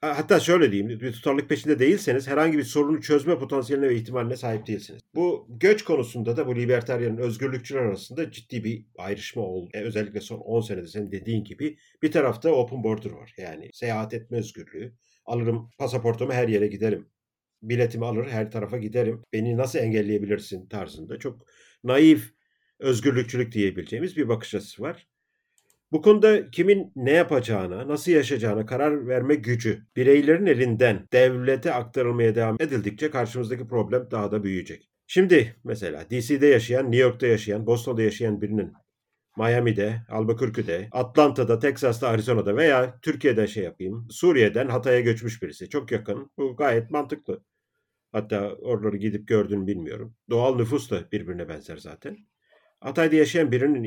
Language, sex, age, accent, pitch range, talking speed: Turkish, male, 50-69, native, 110-135 Hz, 145 wpm